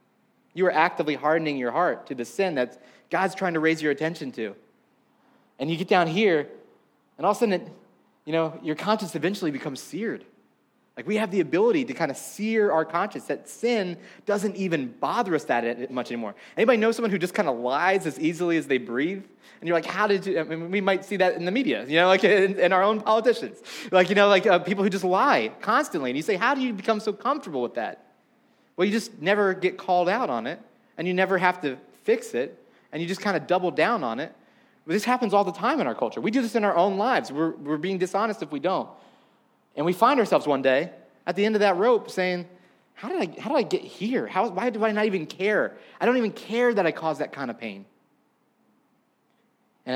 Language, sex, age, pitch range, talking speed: English, male, 30-49, 160-210 Hz, 235 wpm